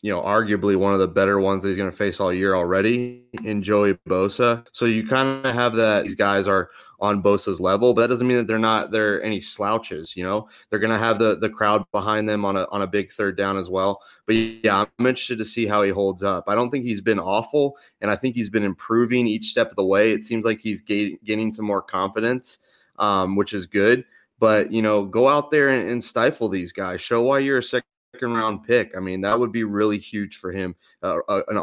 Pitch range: 100-120 Hz